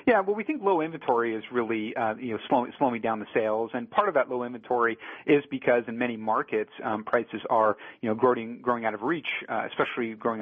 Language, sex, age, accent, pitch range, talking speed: English, male, 40-59, American, 110-130 Hz, 230 wpm